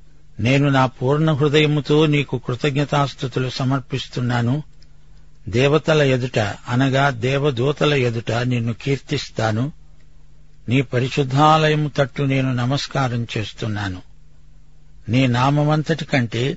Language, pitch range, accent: Telugu, 115-145 Hz, native